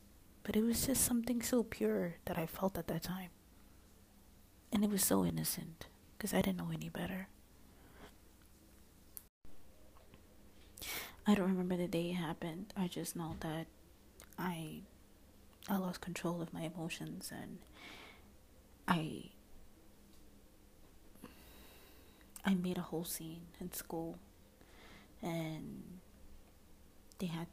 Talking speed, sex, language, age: 120 wpm, female, English, 20-39